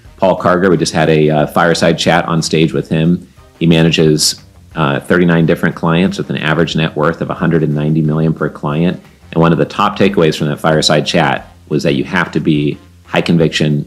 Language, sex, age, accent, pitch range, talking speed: English, male, 40-59, American, 75-90 Hz, 205 wpm